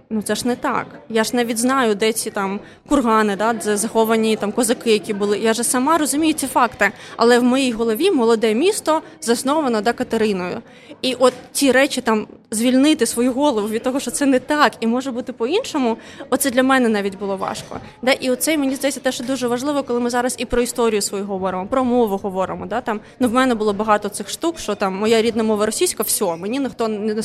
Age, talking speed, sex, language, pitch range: 20-39, 210 wpm, female, Ukrainian, 220-265 Hz